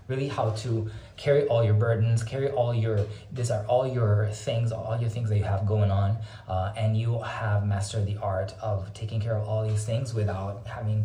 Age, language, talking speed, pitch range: 20-39, English, 210 wpm, 105-130 Hz